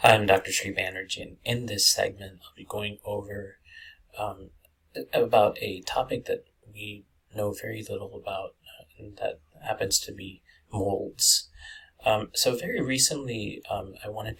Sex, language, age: male, English, 30-49